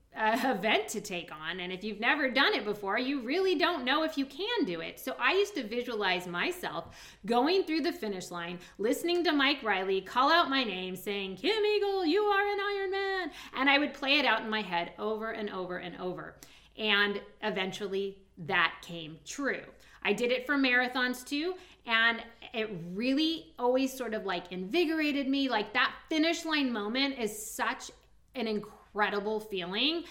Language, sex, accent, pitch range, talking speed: English, female, American, 195-275 Hz, 180 wpm